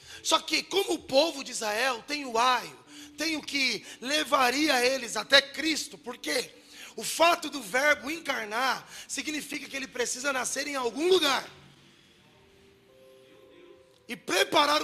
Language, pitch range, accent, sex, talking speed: Portuguese, 255-320 Hz, Brazilian, male, 140 wpm